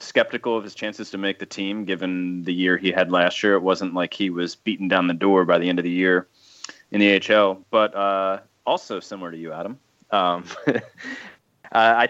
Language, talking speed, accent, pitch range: English, 215 wpm, American, 95-115 Hz